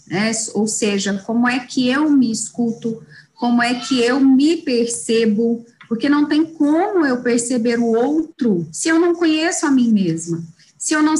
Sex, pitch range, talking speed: female, 225-290 Hz, 175 wpm